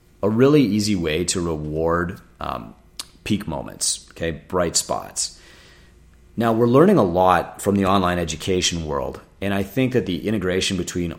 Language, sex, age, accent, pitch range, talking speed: English, male, 30-49, American, 80-95 Hz, 155 wpm